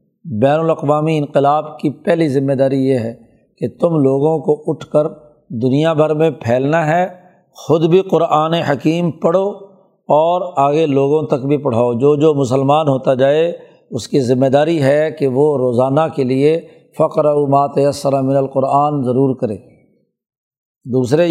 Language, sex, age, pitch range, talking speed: Urdu, male, 50-69, 135-160 Hz, 150 wpm